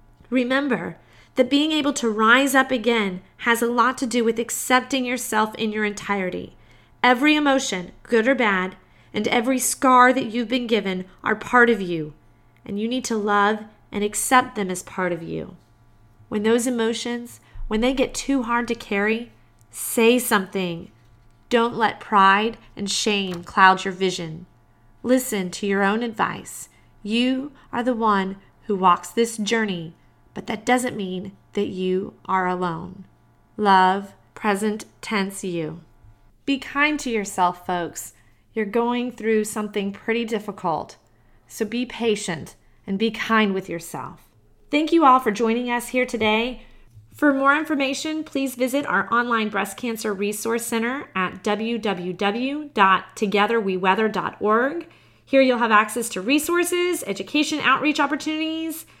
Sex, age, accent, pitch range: female, 30-49, American, 190-250 Hz